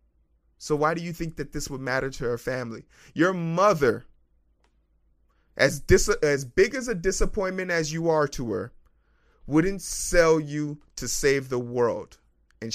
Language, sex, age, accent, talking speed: English, male, 30-49, American, 160 wpm